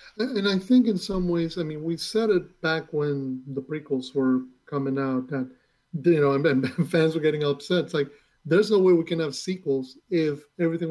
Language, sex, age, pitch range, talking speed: English, male, 30-49, 145-175 Hz, 210 wpm